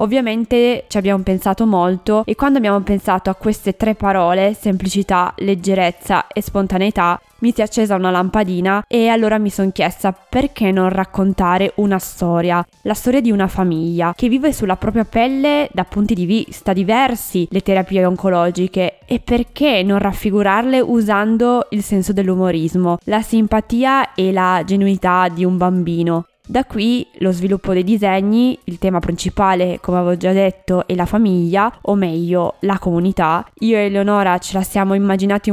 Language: Italian